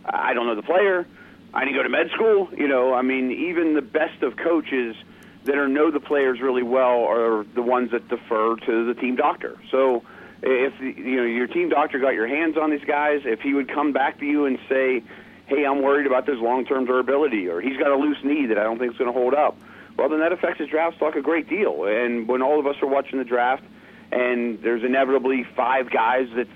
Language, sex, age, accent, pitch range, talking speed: English, male, 40-59, American, 120-150 Hz, 235 wpm